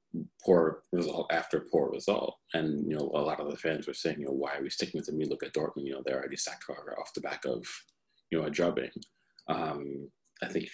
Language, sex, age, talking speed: English, male, 30-49, 245 wpm